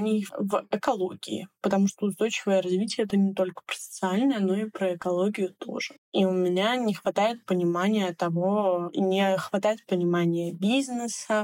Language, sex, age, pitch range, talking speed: Russian, female, 20-39, 180-200 Hz, 145 wpm